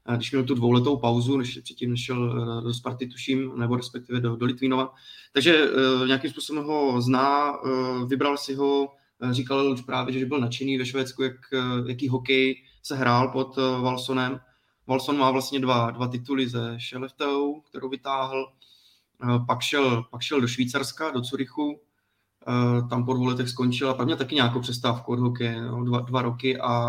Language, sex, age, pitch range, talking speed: Czech, male, 20-39, 120-130 Hz, 160 wpm